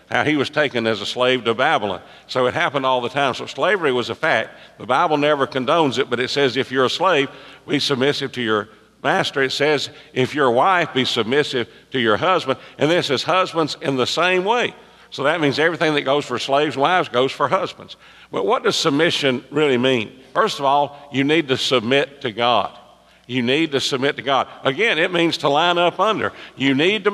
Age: 50-69